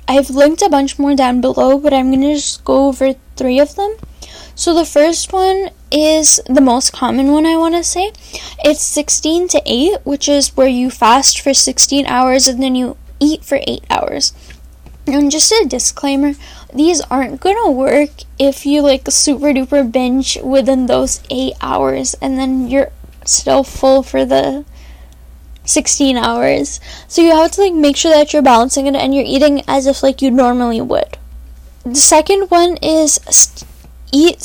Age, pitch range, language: 10-29, 260-295 Hz, English